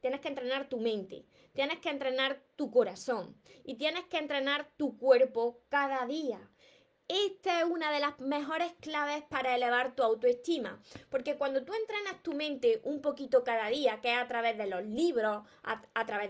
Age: 20-39